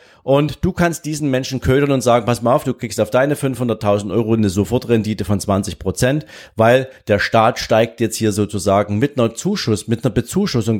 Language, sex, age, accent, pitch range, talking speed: German, male, 40-59, German, 105-135 Hz, 180 wpm